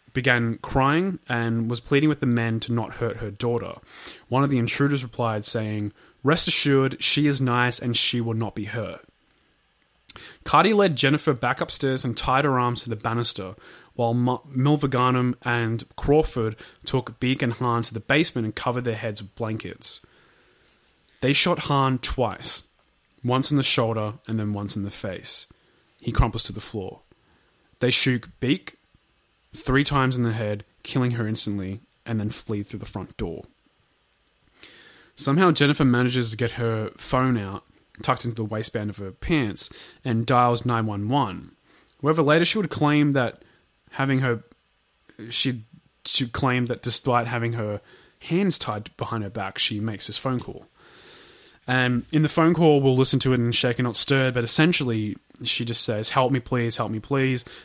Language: English